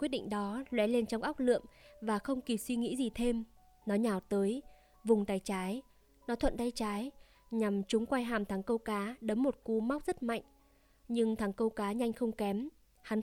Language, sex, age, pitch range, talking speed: Vietnamese, female, 20-39, 205-240 Hz, 210 wpm